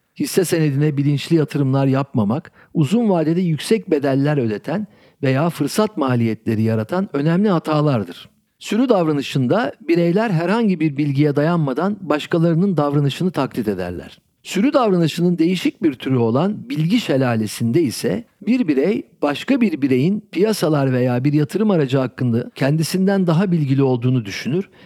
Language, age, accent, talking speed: Turkish, 60-79, native, 125 wpm